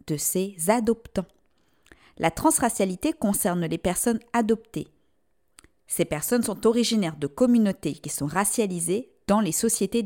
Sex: female